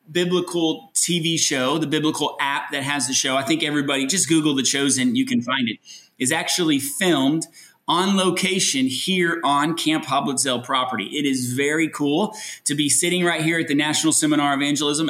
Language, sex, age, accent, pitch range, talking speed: English, male, 30-49, American, 135-170 Hz, 180 wpm